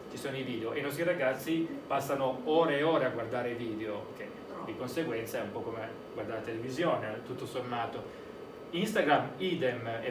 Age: 30-49